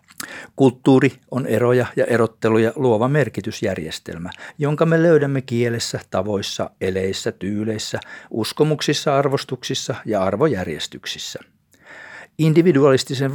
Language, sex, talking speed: Finnish, male, 85 wpm